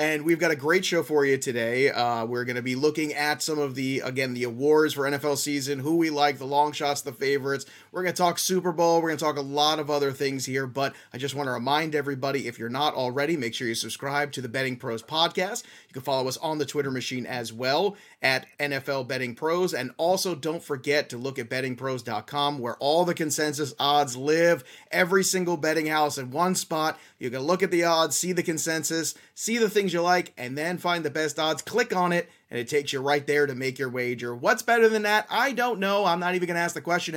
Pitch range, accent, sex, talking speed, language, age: 135-170 Hz, American, male, 245 wpm, English, 30-49